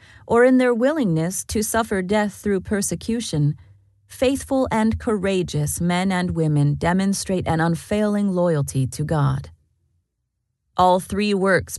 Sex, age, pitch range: female, 30-49, 145-210 Hz